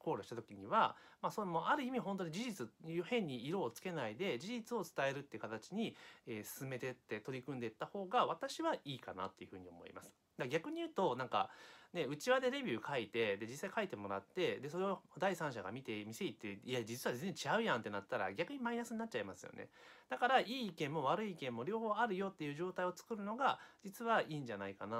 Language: Japanese